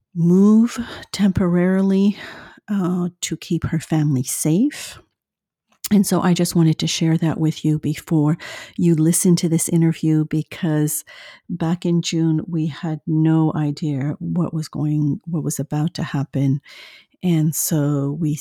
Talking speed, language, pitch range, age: 140 wpm, English, 155-180 Hz, 50-69